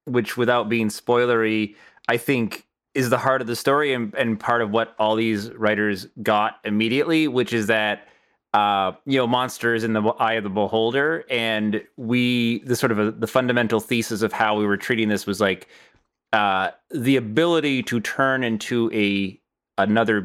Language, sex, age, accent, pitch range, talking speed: English, male, 30-49, American, 100-120 Hz, 180 wpm